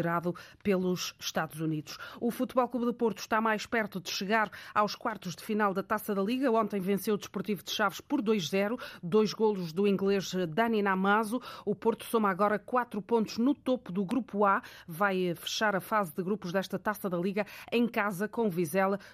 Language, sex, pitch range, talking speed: Portuguese, female, 195-225 Hz, 185 wpm